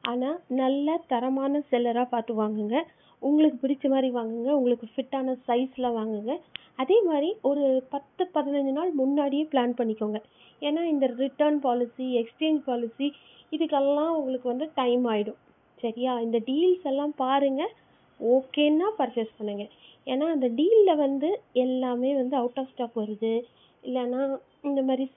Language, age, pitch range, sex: Tamil, 30-49, 240-285 Hz, female